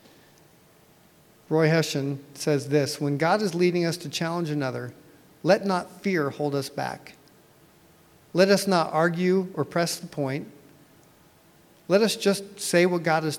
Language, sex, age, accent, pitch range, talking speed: English, male, 50-69, American, 145-180 Hz, 150 wpm